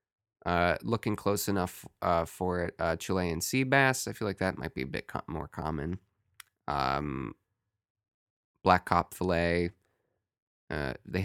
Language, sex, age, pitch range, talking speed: English, male, 20-39, 90-110 Hz, 150 wpm